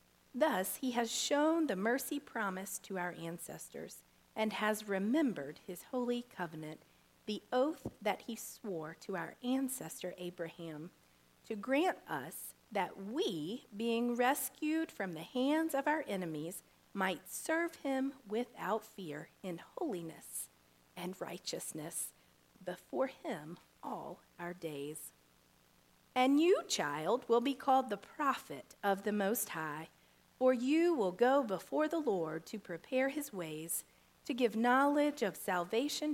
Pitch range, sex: 180-265 Hz, female